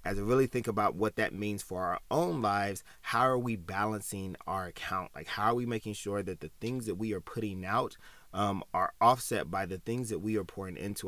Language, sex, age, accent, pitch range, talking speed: English, male, 30-49, American, 95-115 Hz, 235 wpm